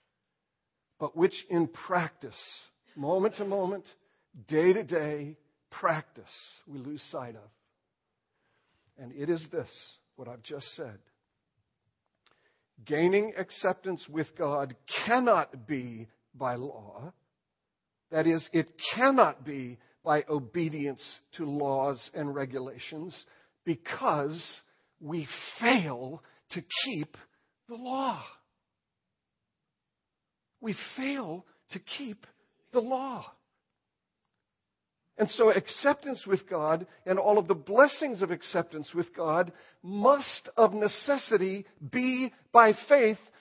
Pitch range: 140-210 Hz